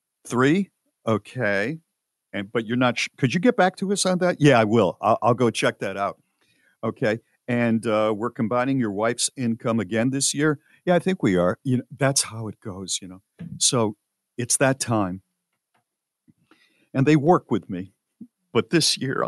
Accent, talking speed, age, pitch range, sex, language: American, 185 wpm, 50-69, 105-140 Hz, male, English